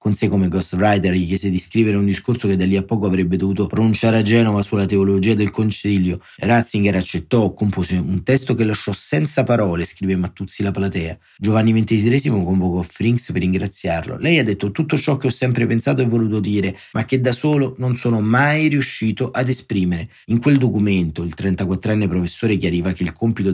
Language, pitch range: Italian, 95-115 Hz